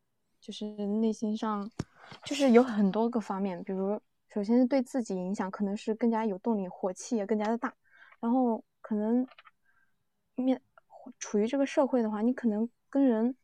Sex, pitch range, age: female, 200-245 Hz, 20-39